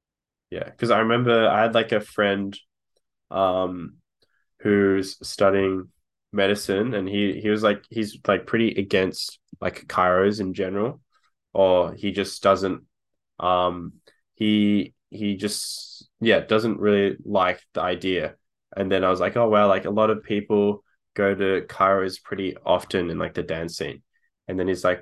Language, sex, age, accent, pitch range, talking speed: English, male, 10-29, Australian, 95-105 Hz, 160 wpm